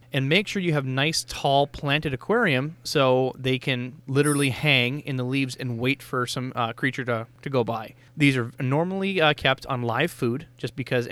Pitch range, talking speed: 125-155 Hz, 200 wpm